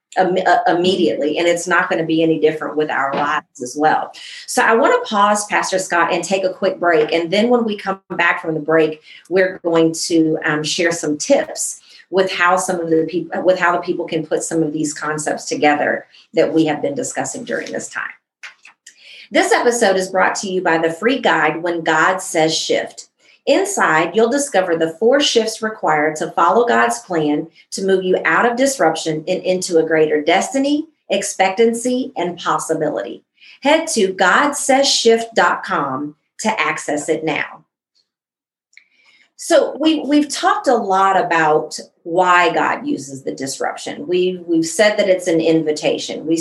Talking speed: 170 wpm